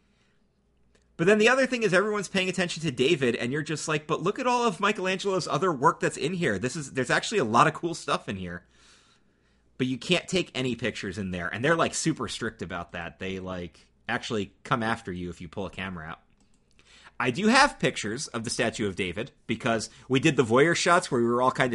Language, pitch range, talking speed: English, 105-155 Hz, 230 wpm